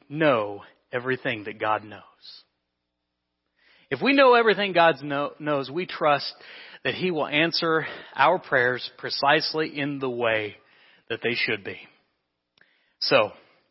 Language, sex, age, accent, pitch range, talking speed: English, male, 40-59, American, 125-170 Hz, 125 wpm